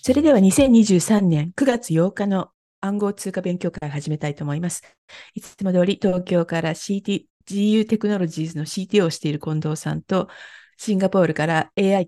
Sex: female